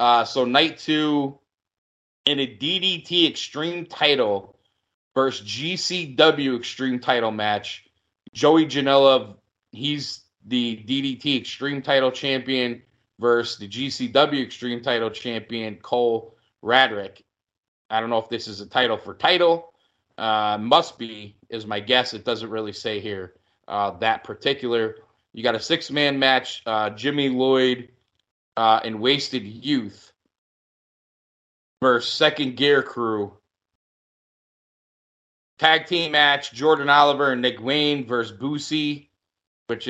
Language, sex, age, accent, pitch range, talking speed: English, male, 30-49, American, 110-140 Hz, 120 wpm